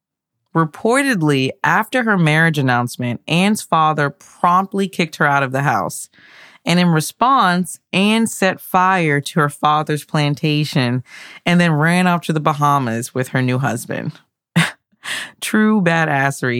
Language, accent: English, American